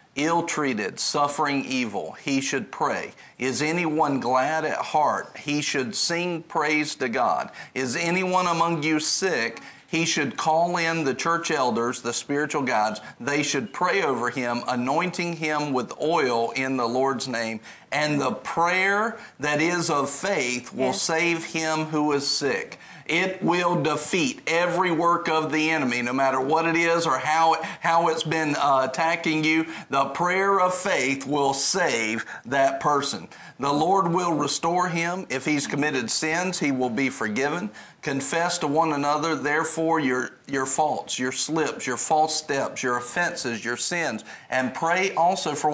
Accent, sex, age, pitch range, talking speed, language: American, male, 40-59, 135-170 Hz, 160 wpm, English